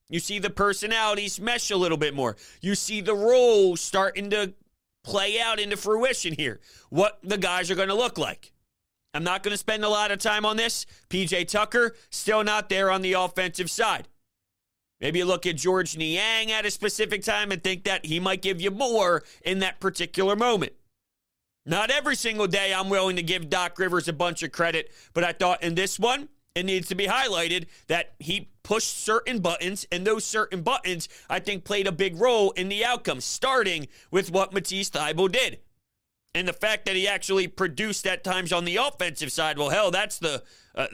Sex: male